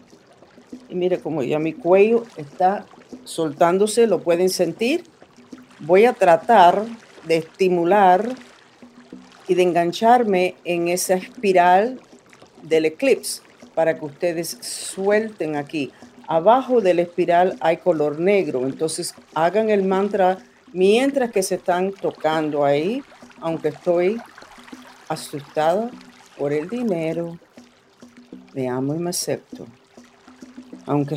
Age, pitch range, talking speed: 50-69, 160-210 Hz, 110 wpm